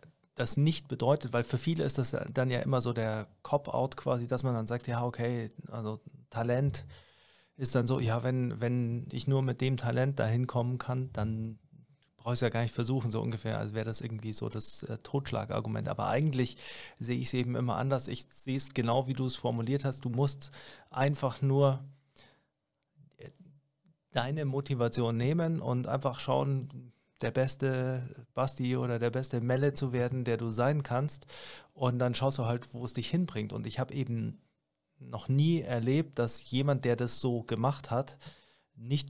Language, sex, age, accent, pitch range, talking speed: German, male, 40-59, German, 120-140 Hz, 180 wpm